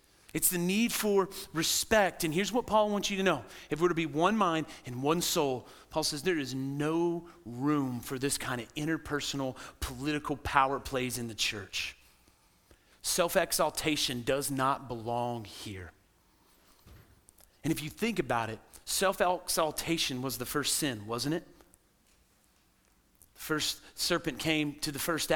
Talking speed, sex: 150 wpm, male